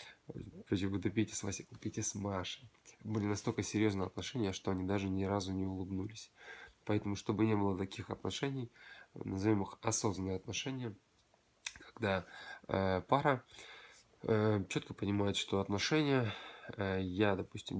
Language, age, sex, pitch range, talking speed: Russian, 20-39, male, 95-115 Hz, 135 wpm